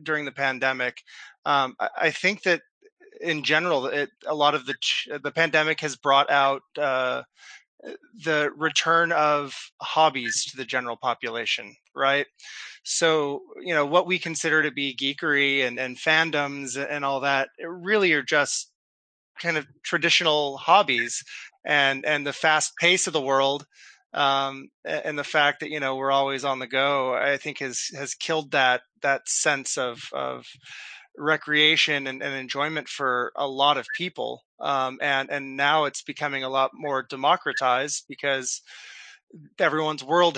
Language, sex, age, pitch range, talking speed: English, male, 20-39, 135-155 Hz, 155 wpm